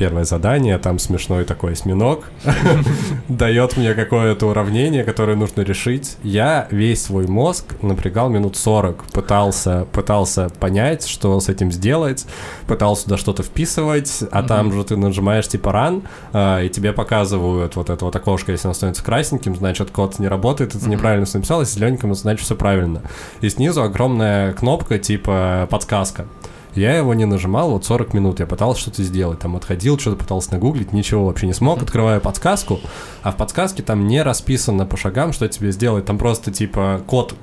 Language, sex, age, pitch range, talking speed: Russian, male, 20-39, 100-125 Hz, 165 wpm